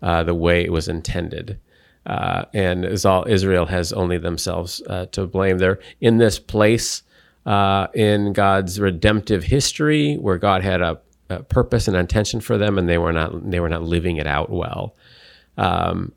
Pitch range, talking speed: 80-95 Hz, 180 wpm